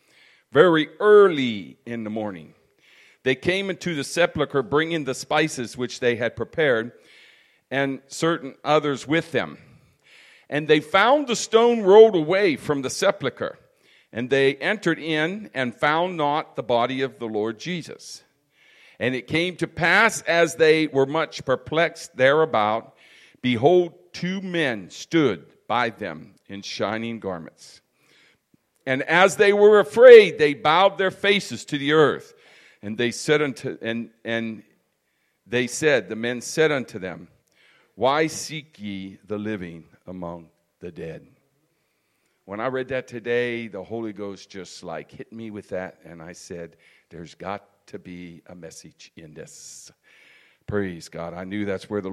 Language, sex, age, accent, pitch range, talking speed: English, male, 50-69, American, 110-165 Hz, 150 wpm